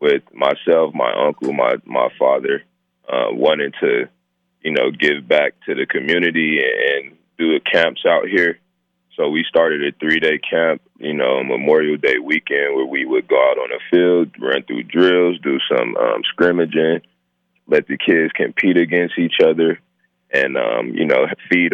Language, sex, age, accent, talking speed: English, male, 20-39, American, 170 wpm